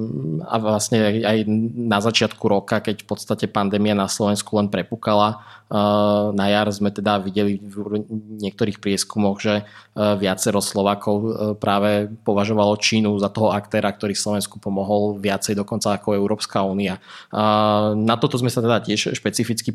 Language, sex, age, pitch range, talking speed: Slovak, male, 20-39, 105-115 Hz, 140 wpm